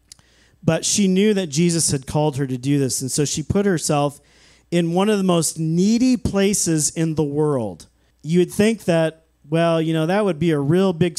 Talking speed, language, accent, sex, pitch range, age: 210 wpm, English, American, male, 135-170 Hz, 40-59